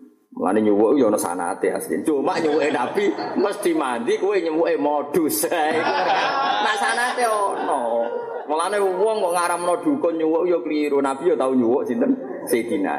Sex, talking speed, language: male, 150 wpm, Malay